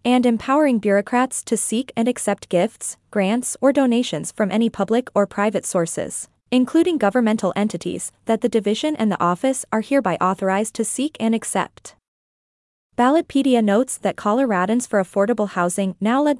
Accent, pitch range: American, 200-245 Hz